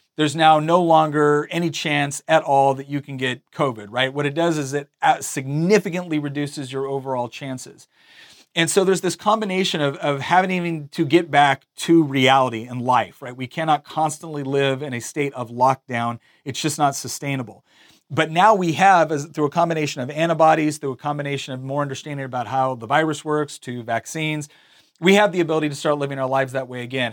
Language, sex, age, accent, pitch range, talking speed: English, male, 40-59, American, 135-160 Hz, 195 wpm